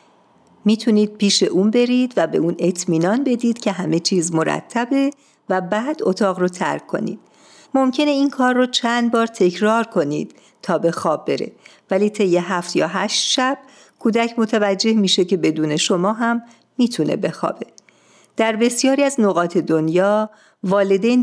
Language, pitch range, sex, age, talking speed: Persian, 170-230 Hz, female, 50-69, 145 wpm